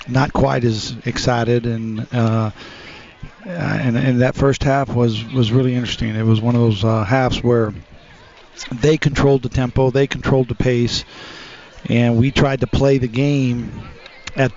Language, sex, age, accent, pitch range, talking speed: English, male, 50-69, American, 120-135 Hz, 160 wpm